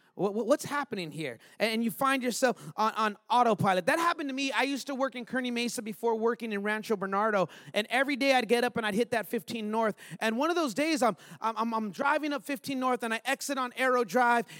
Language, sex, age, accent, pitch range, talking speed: English, male, 30-49, American, 205-270 Hz, 230 wpm